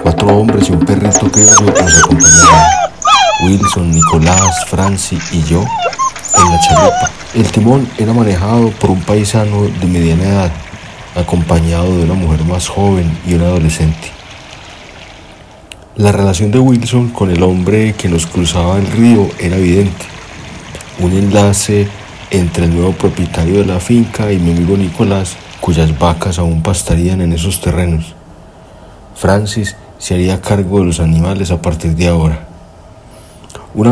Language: Spanish